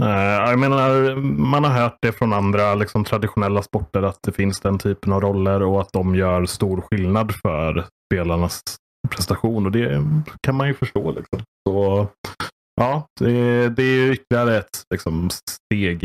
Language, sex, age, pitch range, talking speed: English, male, 30-49, 90-115 Hz, 150 wpm